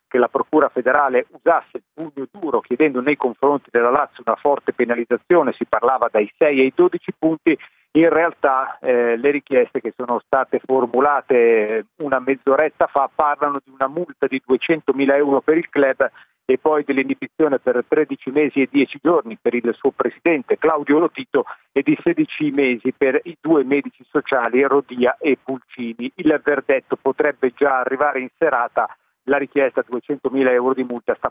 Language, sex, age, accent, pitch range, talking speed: Italian, male, 40-59, native, 130-155 Hz, 170 wpm